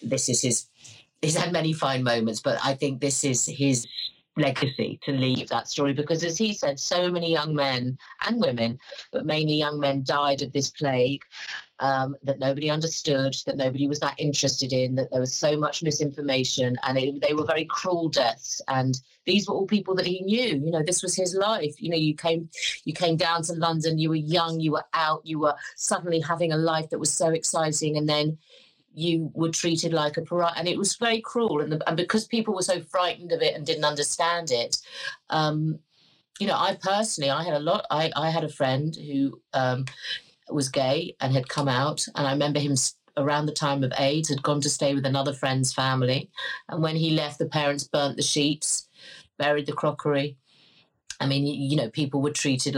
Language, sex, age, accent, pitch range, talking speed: English, female, 40-59, British, 135-165 Hz, 210 wpm